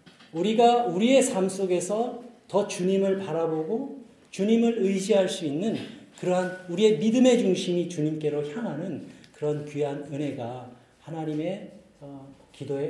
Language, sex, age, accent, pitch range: Korean, male, 40-59, native, 125-180 Hz